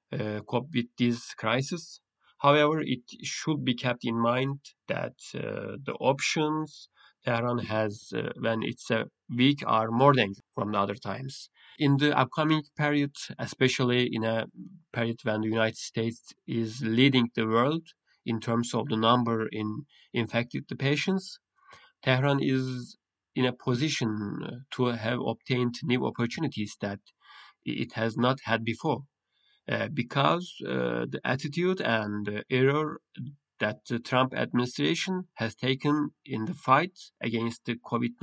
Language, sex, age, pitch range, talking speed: Turkish, male, 40-59, 115-145 Hz, 145 wpm